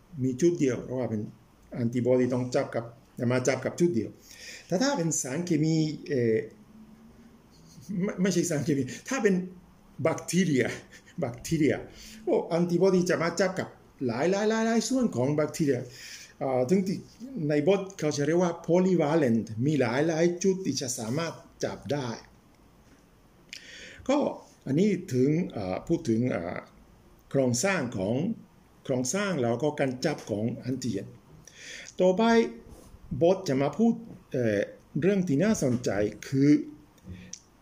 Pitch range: 130-185 Hz